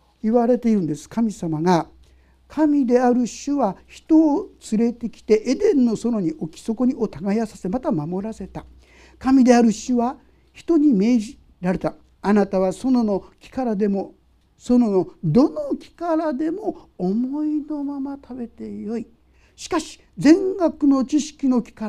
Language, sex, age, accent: Japanese, male, 60-79, native